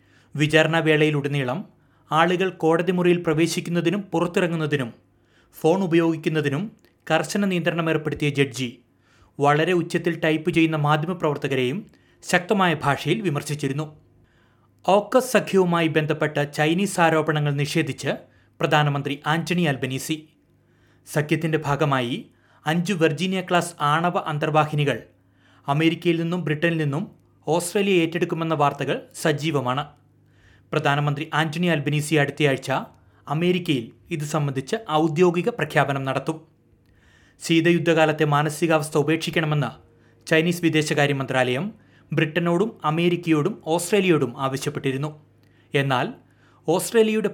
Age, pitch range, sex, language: 30-49, 140-170 Hz, male, Malayalam